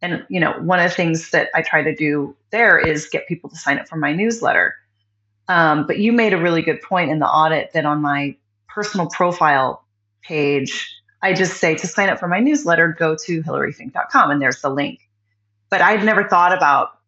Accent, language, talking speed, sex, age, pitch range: American, English, 210 wpm, female, 30-49, 140-205 Hz